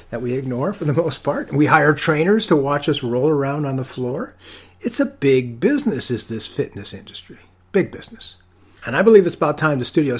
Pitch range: 95-155 Hz